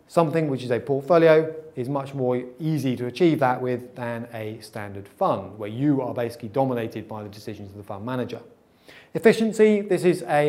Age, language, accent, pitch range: 30-49, English, British, 115-160 Hz